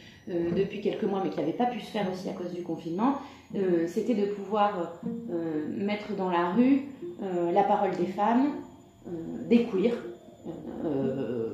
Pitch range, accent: 180-245 Hz, French